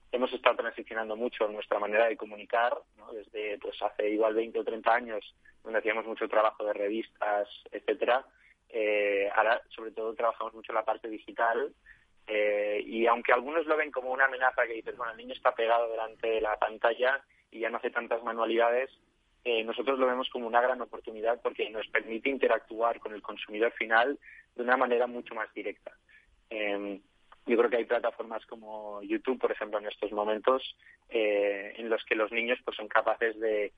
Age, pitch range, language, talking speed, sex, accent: 20-39, 110-130 Hz, Spanish, 185 wpm, male, Spanish